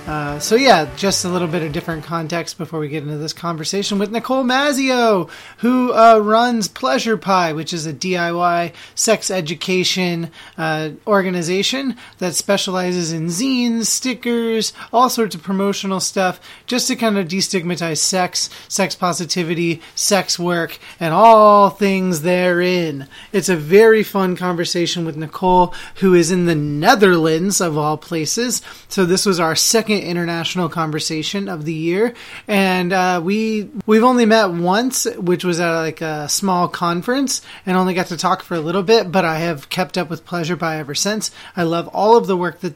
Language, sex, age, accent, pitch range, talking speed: English, male, 30-49, American, 165-205 Hz, 170 wpm